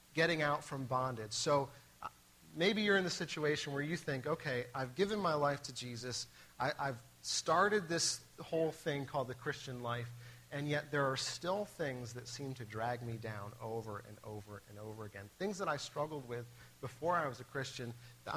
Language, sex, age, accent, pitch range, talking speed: English, male, 40-59, American, 120-150 Hz, 190 wpm